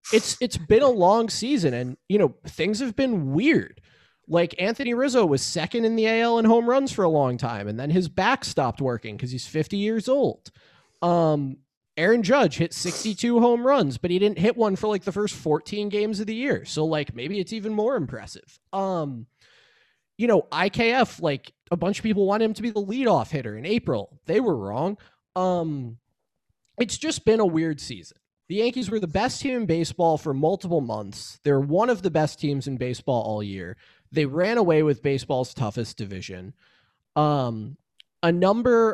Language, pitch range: English, 130-200 Hz